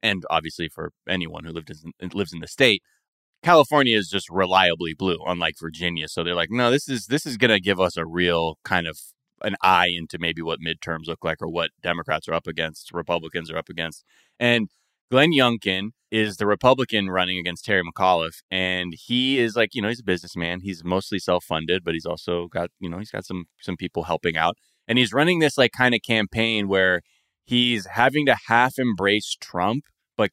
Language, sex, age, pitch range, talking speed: English, male, 20-39, 90-125 Hz, 205 wpm